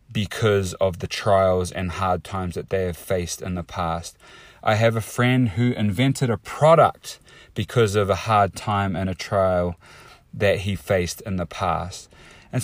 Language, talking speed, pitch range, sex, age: English, 175 wpm, 95-120 Hz, male, 30-49